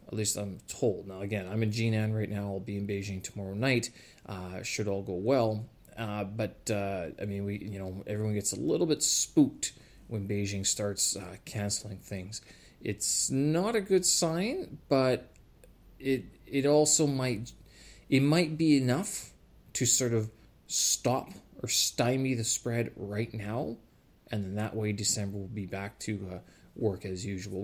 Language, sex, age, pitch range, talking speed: English, male, 30-49, 100-130 Hz, 170 wpm